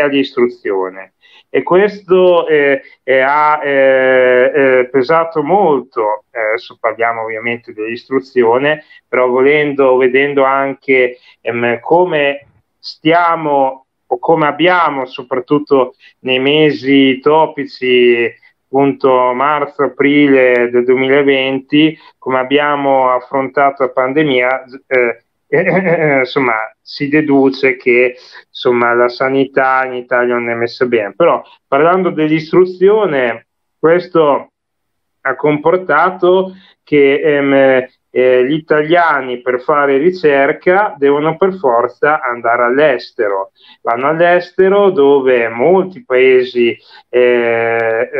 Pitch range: 125-150 Hz